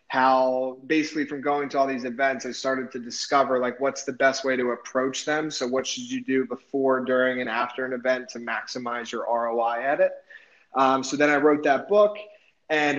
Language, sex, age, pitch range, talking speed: English, male, 20-39, 130-145 Hz, 205 wpm